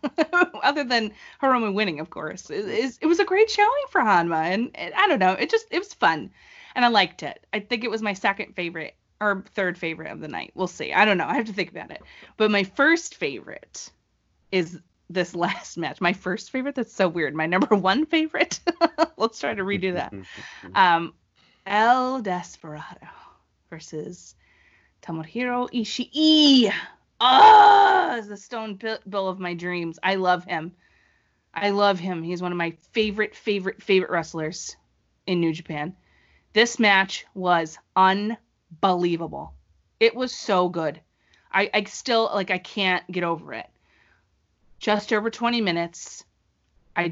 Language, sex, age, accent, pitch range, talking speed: English, female, 20-39, American, 175-235 Hz, 160 wpm